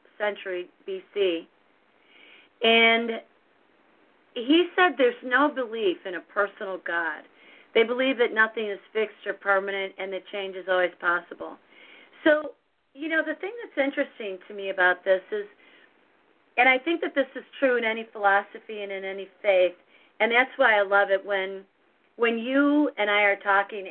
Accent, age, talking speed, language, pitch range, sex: American, 40-59, 165 wpm, English, 195-235 Hz, female